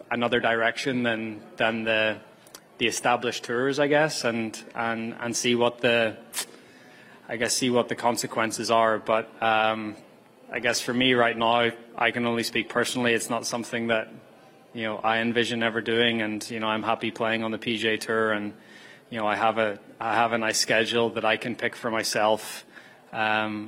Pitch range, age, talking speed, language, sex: 110-120 Hz, 20-39, 190 wpm, English, male